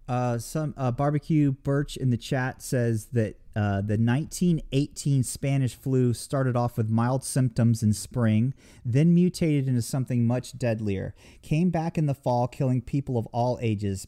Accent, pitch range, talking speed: American, 115-155 Hz, 160 wpm